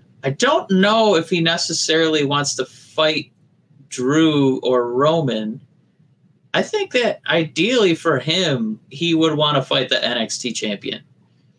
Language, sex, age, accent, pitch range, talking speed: English, male, 30-49, American, 120-160 Hz, 135 wpm